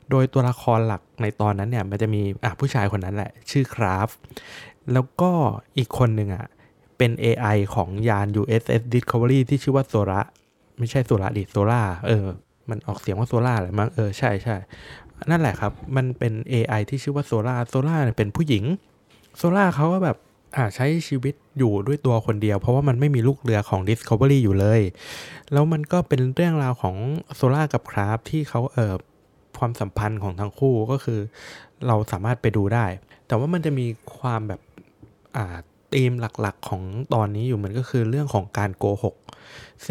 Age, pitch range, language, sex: 20-39, 105-135 Hz, Thai, male